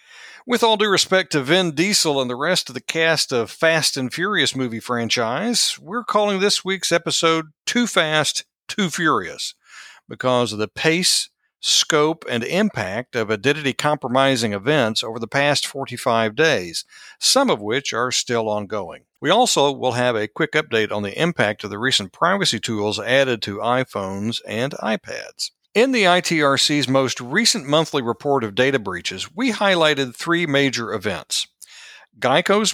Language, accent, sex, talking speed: English, American, male, 155 wpm